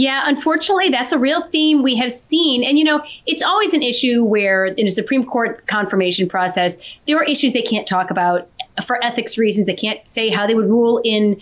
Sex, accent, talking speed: female, American, 215 wpm